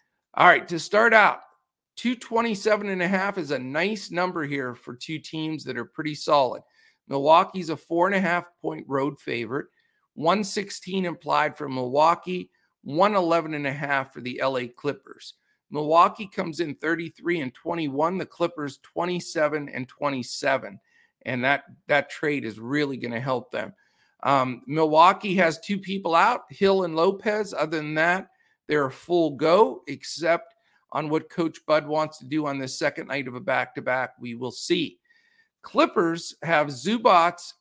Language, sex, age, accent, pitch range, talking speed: English, male, 50-69, American, 140-185 Hz, 145 wpm